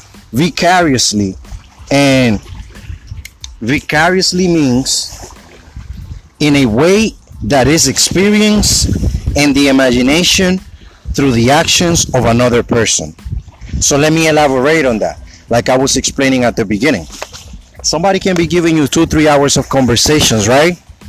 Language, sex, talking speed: English, male, 120 wpm